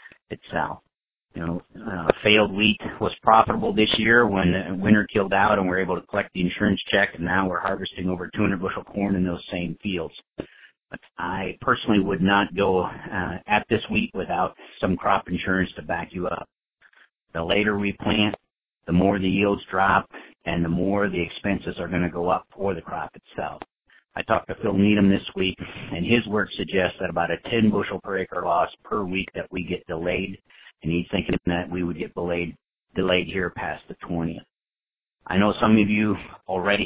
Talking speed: 195 wpm